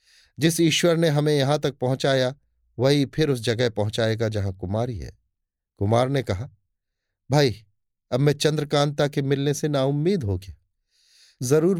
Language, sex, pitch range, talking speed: Hindi, male, 95-150 Hz, 145 wpm